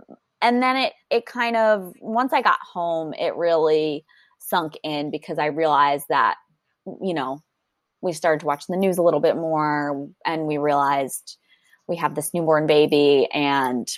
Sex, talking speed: female, 170 wpm